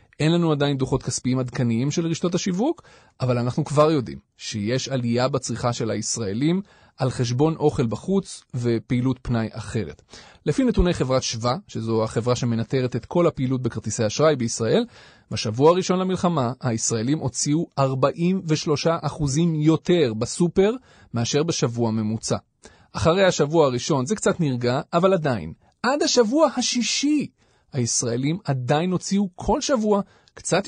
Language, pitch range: Hebrew, 120-170 Hz